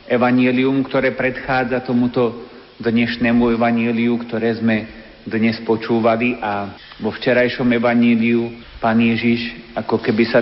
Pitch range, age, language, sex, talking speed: 115-135 Hz, 50-69, Slovak, male, 105 wpm